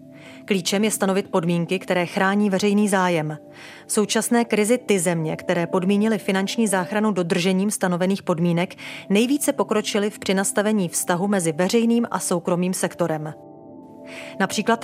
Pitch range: 185-220 Hz